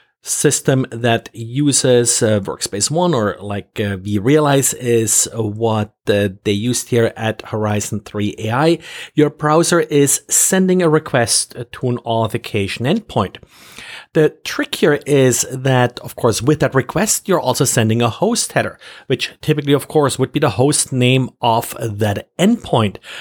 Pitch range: 115-155 Hz